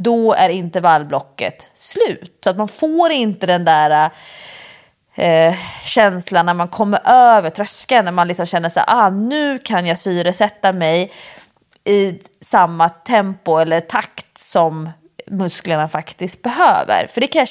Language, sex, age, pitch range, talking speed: English, female, 20-39, 170-220 Hz, 145 wpm